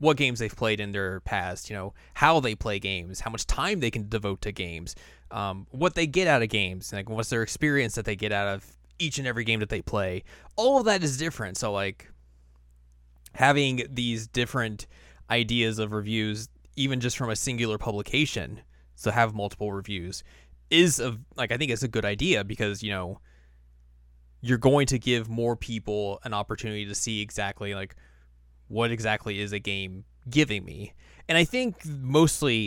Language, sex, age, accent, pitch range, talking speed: English, male, 20-39, American, 95-115 Hz, 185 wpm